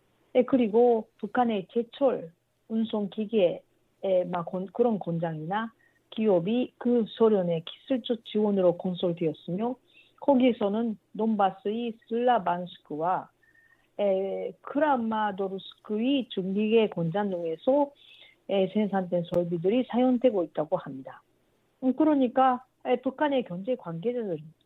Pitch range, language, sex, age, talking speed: 185-255 Hz, English, female, 40-59, 75 wpm